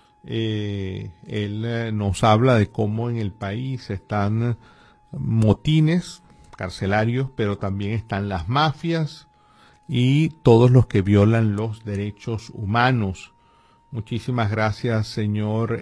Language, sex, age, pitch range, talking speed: Spanish, male, 50-69, 110-140 Hz, 110 wpm